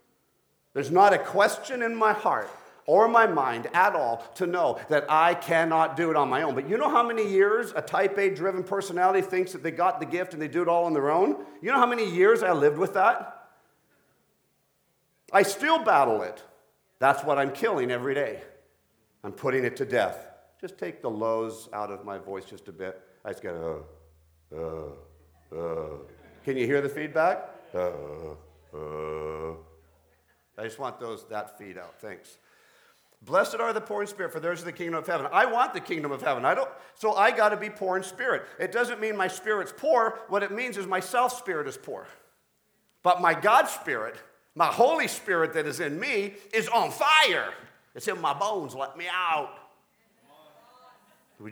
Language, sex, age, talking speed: English, male, 50-69, 195 wpm